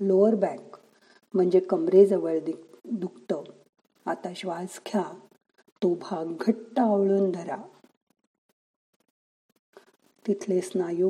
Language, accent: Marathi, native